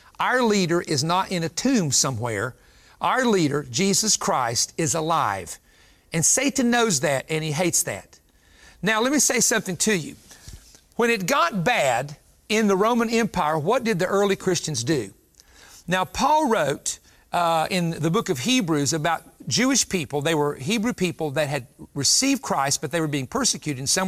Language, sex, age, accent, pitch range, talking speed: English, male, 50-69, American, 150-200 Hz, 175 wpm